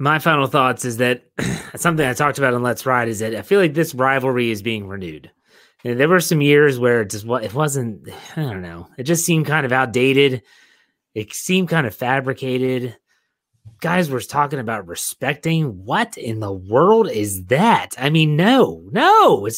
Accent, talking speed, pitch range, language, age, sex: American, 190 wpm, 115-150 Hz, English, 30-49, male